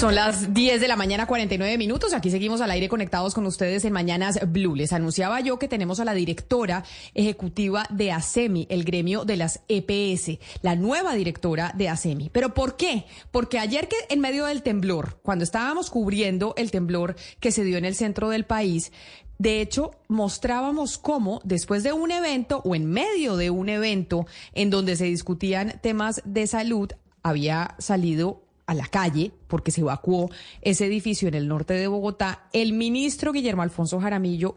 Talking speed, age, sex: 180 wpm, 30-49, female